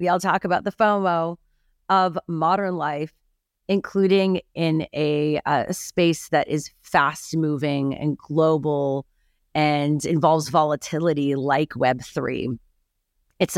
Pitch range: 140-170 Hz